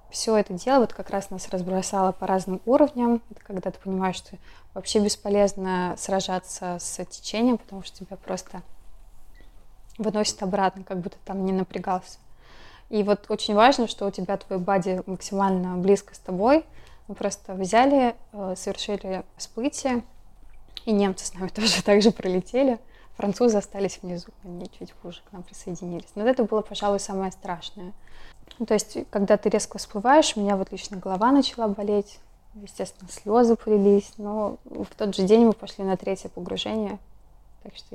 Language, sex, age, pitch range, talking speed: Russian, female, 20-39, 185-215 Hz, 160 wpm